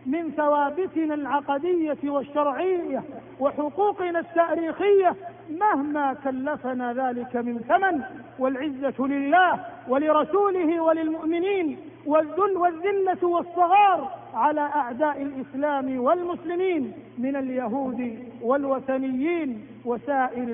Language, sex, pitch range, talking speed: Arabic, male, 225-305 Hz, 75 wpm